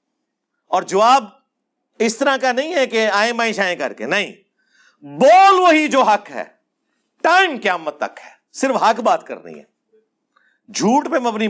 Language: Urdu